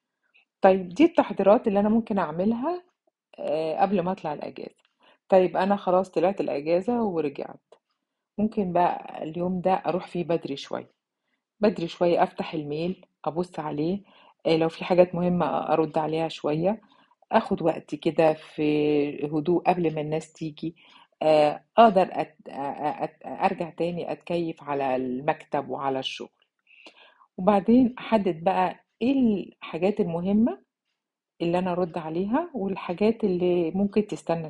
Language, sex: Arabic, female